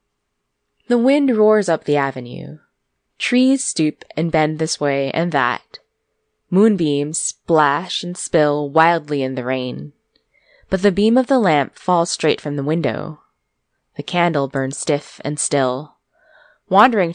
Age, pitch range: 20-39, 140-190 Hz